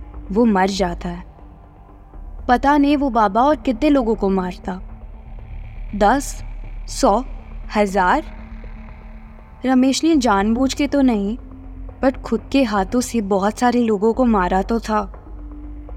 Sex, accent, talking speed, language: female, native, 130 wpm, Hindi